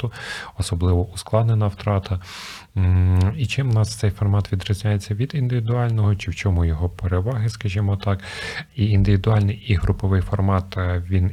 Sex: male